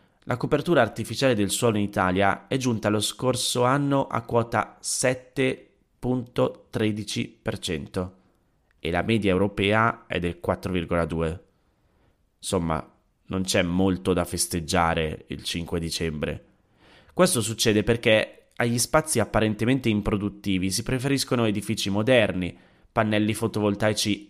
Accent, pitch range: native, 95-120 Hz